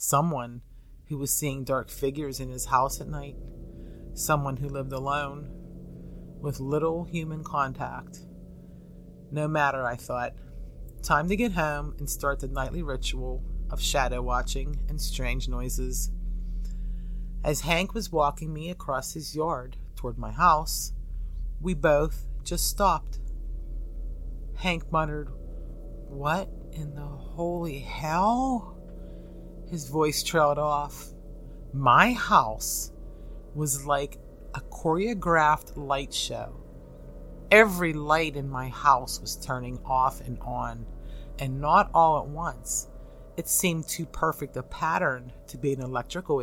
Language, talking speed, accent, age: English, 125 wpm, American, 30-49